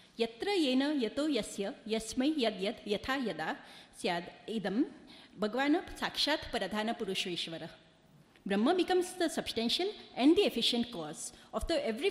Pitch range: 215-305 Hz